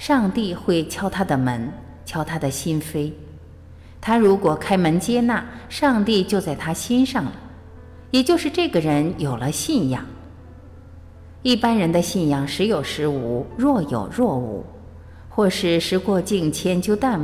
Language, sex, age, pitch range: Chinese, female, 50-69, 130-215 Hz